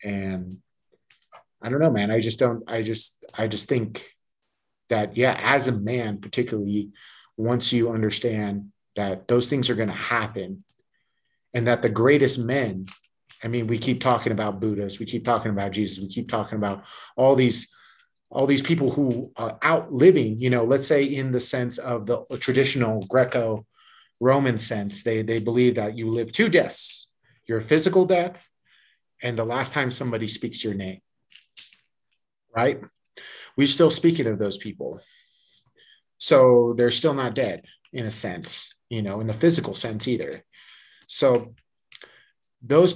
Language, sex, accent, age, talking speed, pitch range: English, male, American, 30-49, 160 wpm, 105-130 Hz